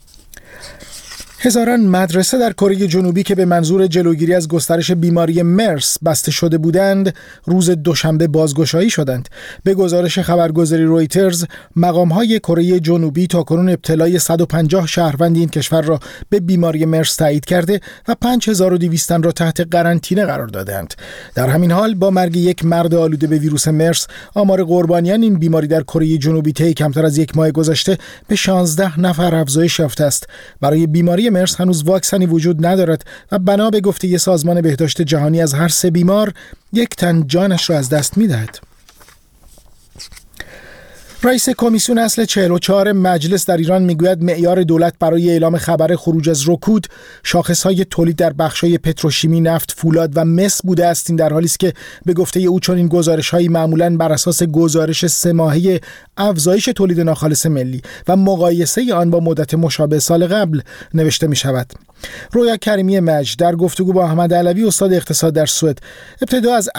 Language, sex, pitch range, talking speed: Persian, male, 160-185 Hz, 155 wpm